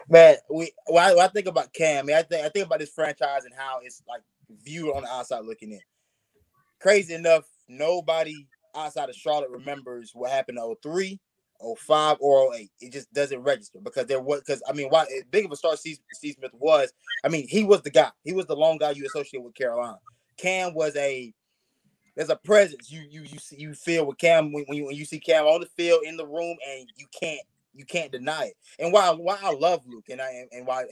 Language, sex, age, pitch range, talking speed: English, male, 20-39, 140-195 Hz, 220 wpm